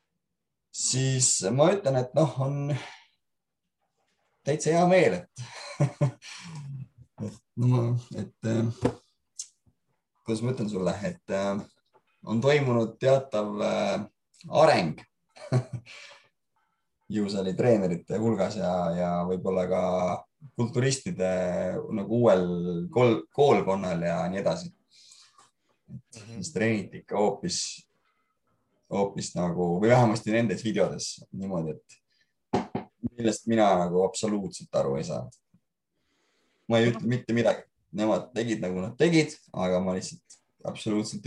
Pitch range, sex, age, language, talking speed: 95-130 Hz, male, 30-49, English, 100 wpm